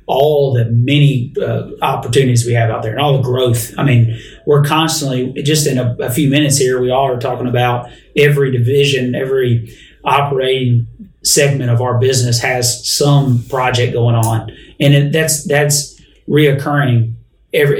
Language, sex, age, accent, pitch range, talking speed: English, male, 30-49, American, 125-145 Hz, 160 wpm